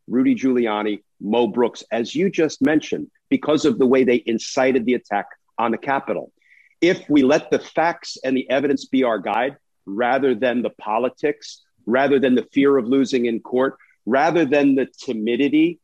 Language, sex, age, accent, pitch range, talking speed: English, male, 50-69, American, 115-145 Hz, 175 wpm